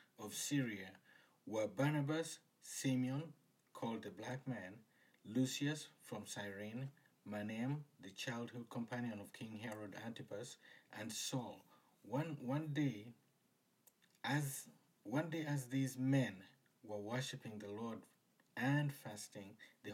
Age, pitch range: 50-69, 110-140 Hz